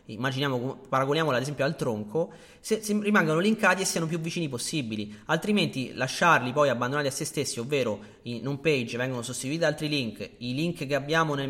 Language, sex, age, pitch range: Italian, male, 30-49, 125-165 Hz